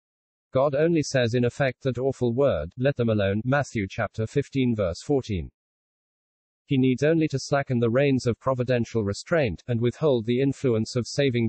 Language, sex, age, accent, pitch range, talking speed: English, male, 40-59, British, 110-135 Hz, 165 wpm